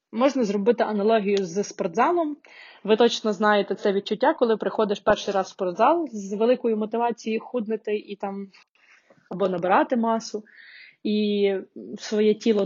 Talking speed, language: 130 wpm, Ukrainian